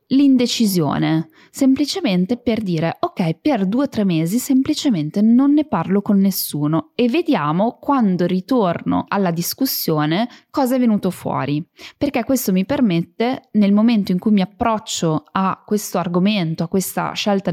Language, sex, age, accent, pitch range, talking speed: Italian, female, 20-39, native, 170-230 Hz, 145 wpm